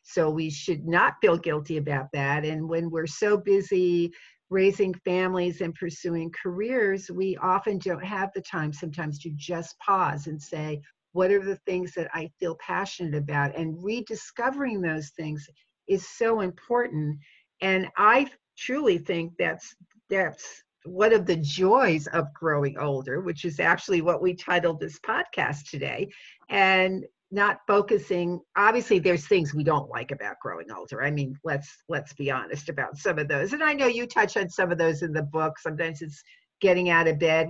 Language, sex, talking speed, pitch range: English, female, 175 wpm, 155-185 Hz